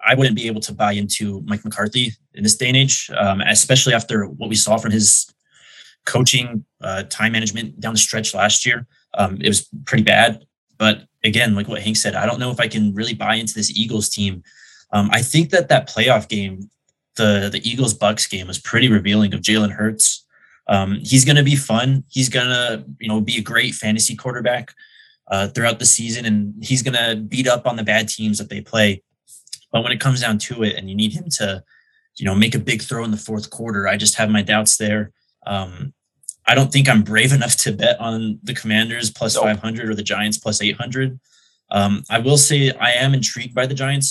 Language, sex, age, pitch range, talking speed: English, male, 20-39, 105-120 Hz, 220 wpm